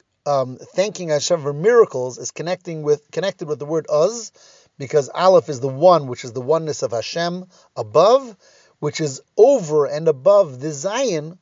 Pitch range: 135-180 Hz